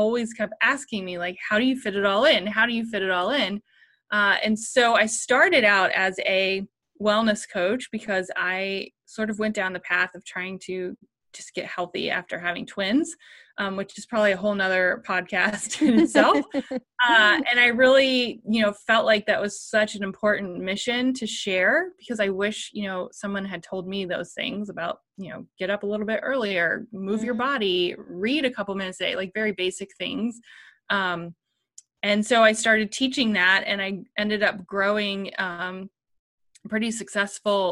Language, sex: English, female